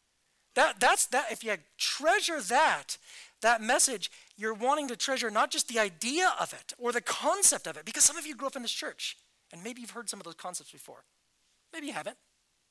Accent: American